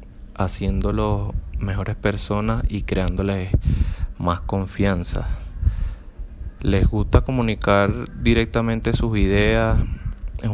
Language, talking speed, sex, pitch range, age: Spanish, 80 wpm, male, 95-105 Hz, 20-39